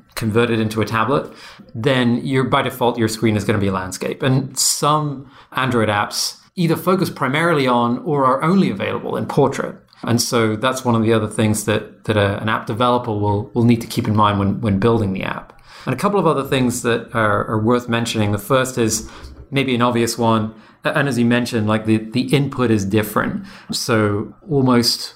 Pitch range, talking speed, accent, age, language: 110-135 Hz, 200 wpm, British, 30-49, English